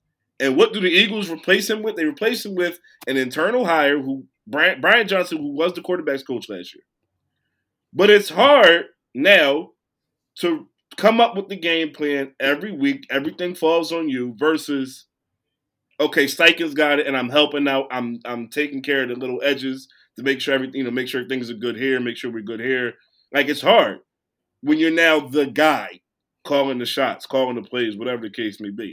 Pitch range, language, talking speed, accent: 135-210 Hz, English, 200 wpm, American